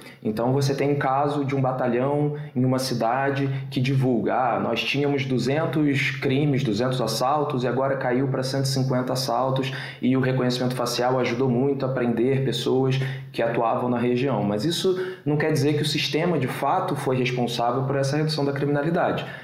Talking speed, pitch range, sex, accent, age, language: 170 wpm, 125-150 Hz, male, Brazilian, 20-39, Portuguese